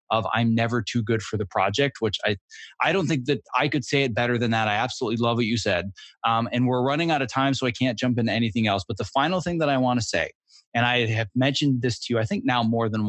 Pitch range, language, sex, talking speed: 115-155 Hz, English, male, 280 wpm